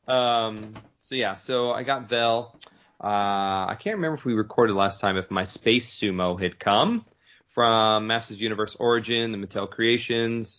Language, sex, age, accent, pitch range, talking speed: English, male, 30-49, American, 100-120 Hz, 165 wpm